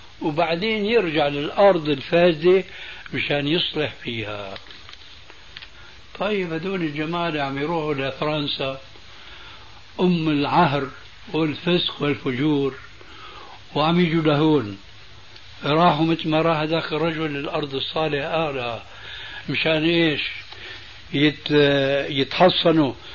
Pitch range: 135-170 Hz